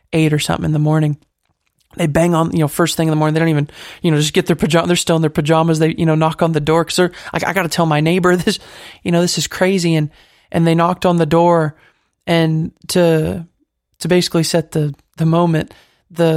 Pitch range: 155-170 Hz